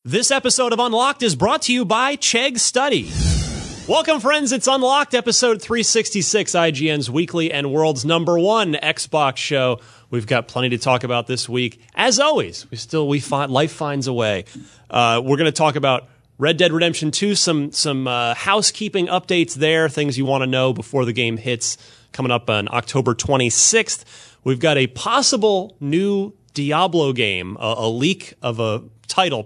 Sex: male